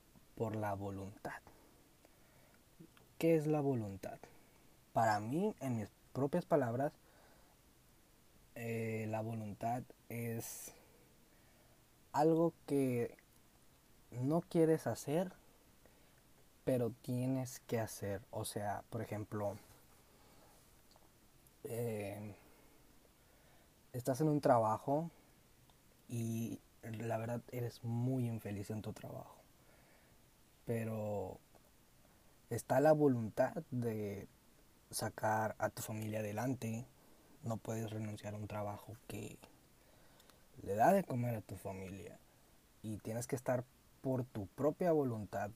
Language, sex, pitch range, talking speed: Danish, male, 105-125 Hz, 100 wpm